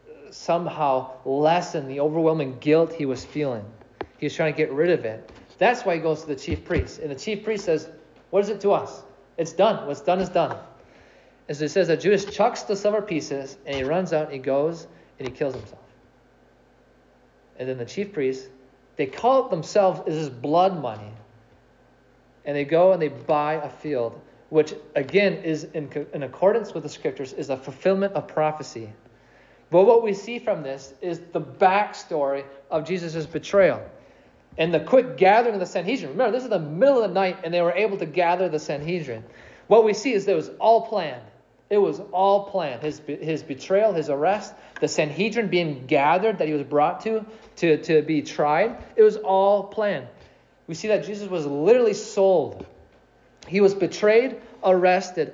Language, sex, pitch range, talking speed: English, male, 145-195 Hz, 190 wpm